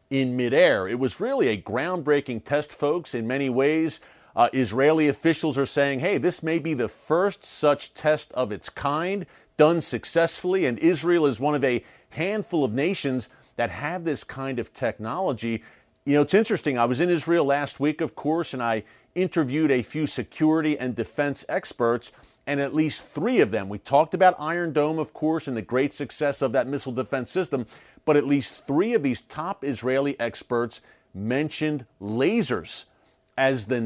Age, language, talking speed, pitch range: 40-59, English, 180 wpm, 125-155 Hz